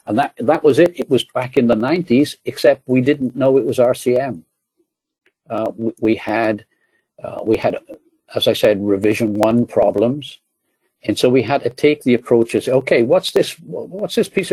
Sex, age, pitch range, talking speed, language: male, 60-79, 110-135 Hz, 185 wpm, English